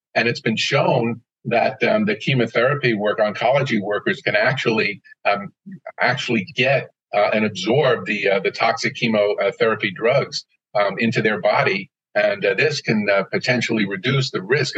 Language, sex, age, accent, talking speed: English, male, 50-69, American, 155 wpm